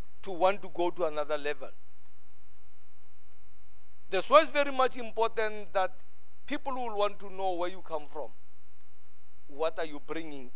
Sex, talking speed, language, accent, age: male, 155 wpm, English, South African, 50-69